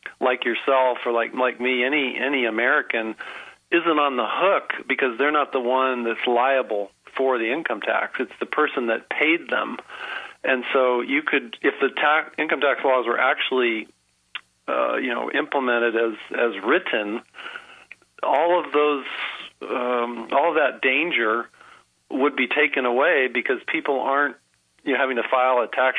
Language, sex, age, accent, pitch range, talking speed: English, male, 40-59, American, 120-140 Hz, 165 wpm